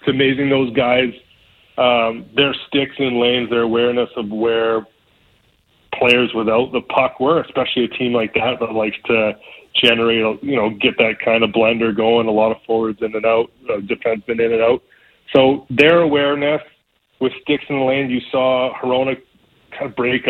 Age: 30-49